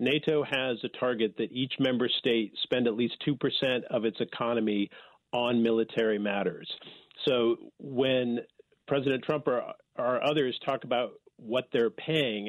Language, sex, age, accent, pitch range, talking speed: English, male, 40-59, American, 115-150 Hz, 150 wpm